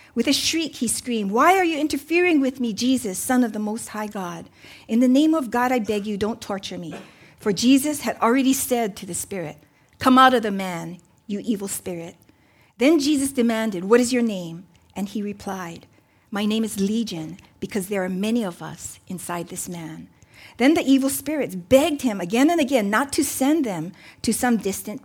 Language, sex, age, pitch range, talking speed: English, female, 50-69, 185-260 Hz, 200 wpm